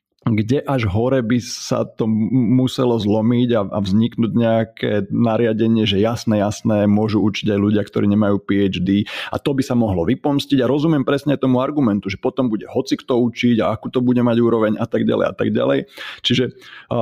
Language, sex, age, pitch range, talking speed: Slovak, male, 30-49, 105-130 Hz, 185 wpm